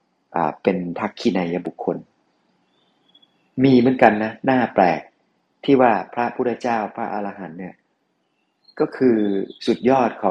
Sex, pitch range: male, 95-115 Hz